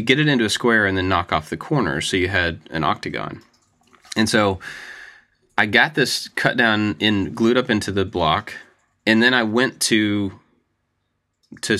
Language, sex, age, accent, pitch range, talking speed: English, male, 30-49, American, 85-115 Hz, 180 wpm